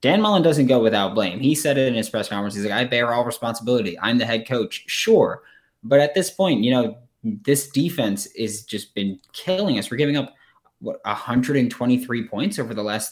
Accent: American